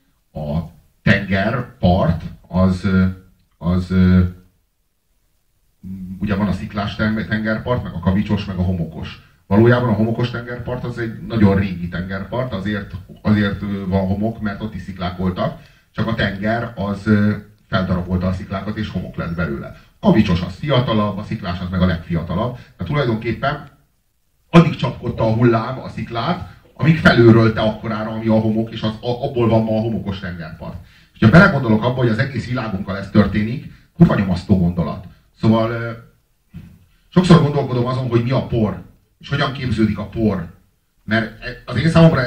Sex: male